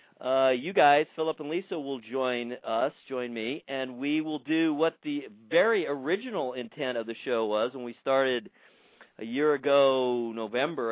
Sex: male